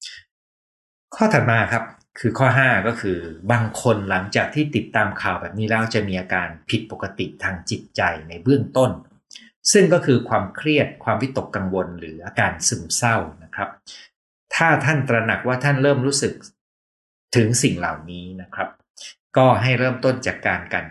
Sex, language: male, Thai